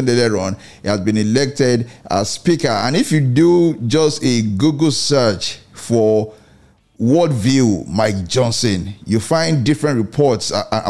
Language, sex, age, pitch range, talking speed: English, male, 40-59, 110-150 Hz, 145 wpm